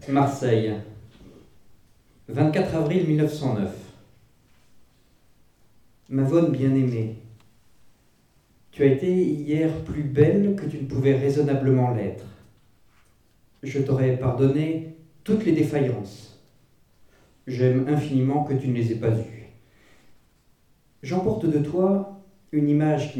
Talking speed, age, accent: 105 wpm, 40-59, French